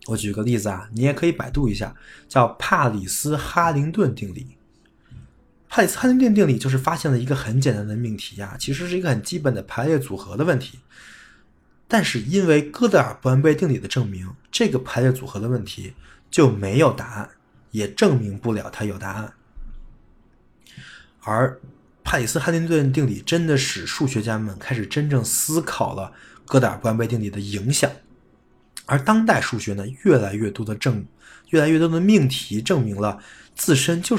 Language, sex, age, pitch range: Chinese, male, 20-39, 105-150 Hz